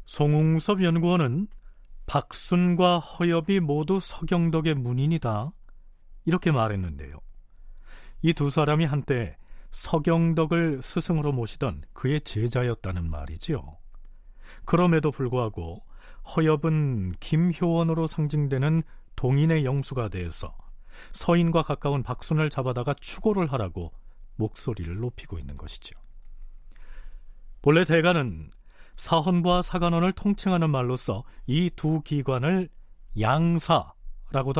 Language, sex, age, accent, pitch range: Korean, male, 40-59, native, 115-165 Hz